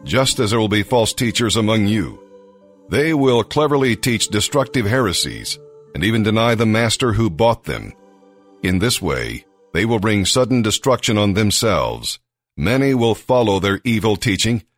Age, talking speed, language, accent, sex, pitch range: 50-69, 160 wpm, English, American, male, 100-120 Hz